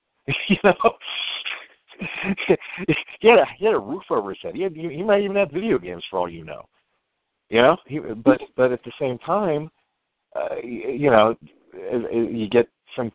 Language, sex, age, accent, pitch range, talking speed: English, male, 50-69, American, 100-145 Hz, 185 wpm